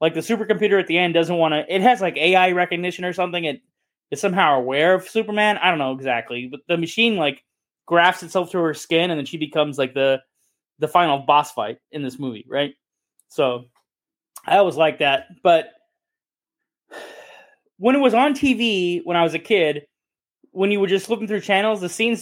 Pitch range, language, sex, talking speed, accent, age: 155-205 Hz, English, male, 200 wpm, American, 20-39